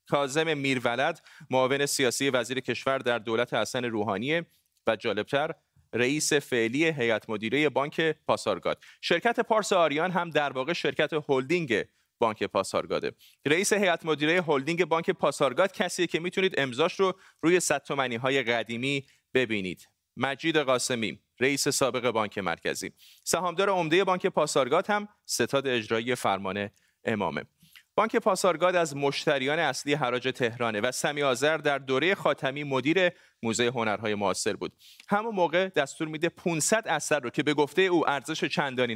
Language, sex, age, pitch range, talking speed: Persian, male, 30-49, 125-170 Hz, 135 wpm